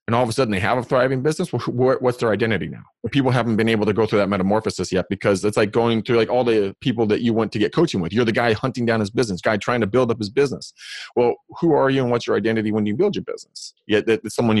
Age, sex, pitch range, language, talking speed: 30-49, male, 105-140 Hz, English, 290 wpm